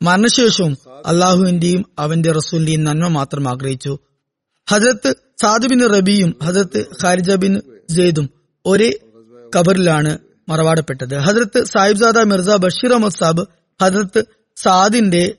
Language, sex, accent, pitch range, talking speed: Malayalam, female, native, 160-200 Hz, 90 wpm